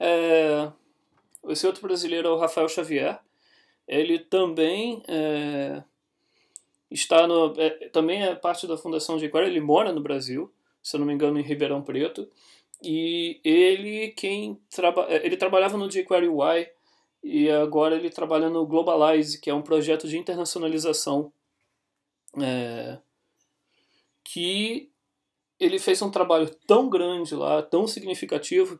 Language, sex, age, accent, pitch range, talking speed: Portuguese, male, 20-39, Brazilian, 155-195 Hz, 120 wpm